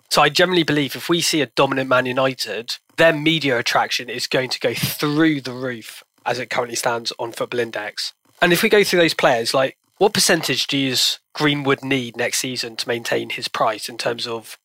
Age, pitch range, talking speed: 20-39, 125-150 Hz, 205 wpm